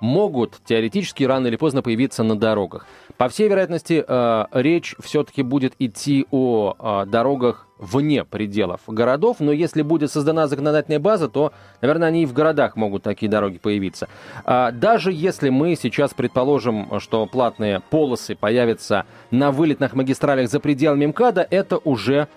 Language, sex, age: Russian, male, 30-49